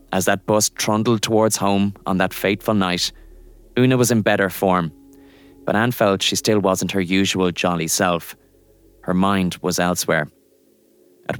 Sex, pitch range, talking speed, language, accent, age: male, 90-110 Hz, 160 wpm, English, Irish, 20-39